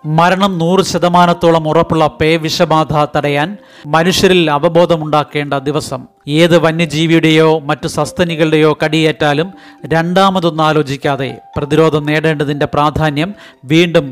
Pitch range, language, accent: 150-165 Hz, Malayalam, native